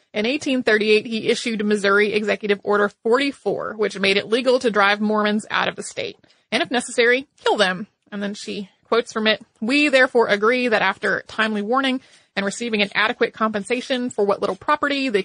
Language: English